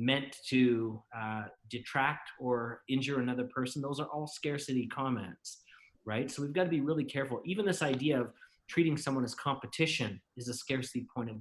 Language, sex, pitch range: English, male, 120-140 Hz